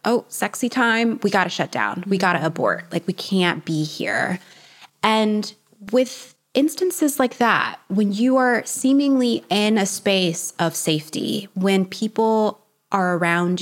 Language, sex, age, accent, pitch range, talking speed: English, female, 20-39, American, 165-215 Hz, 155 wpm